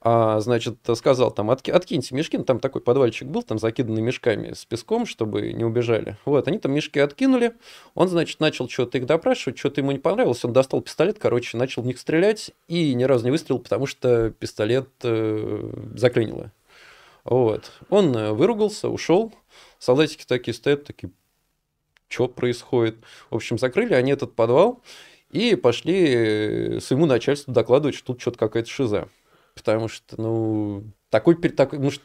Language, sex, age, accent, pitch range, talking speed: Russian, male, 20-39, native, 110-140 Hz, 160 wpm